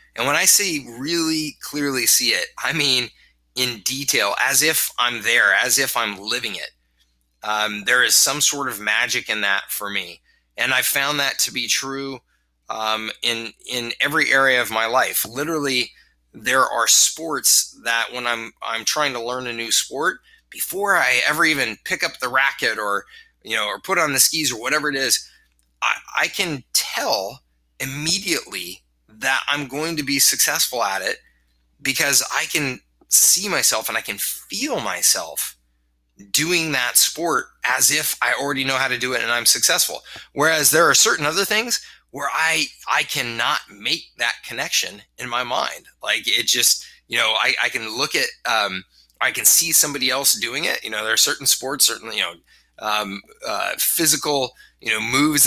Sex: male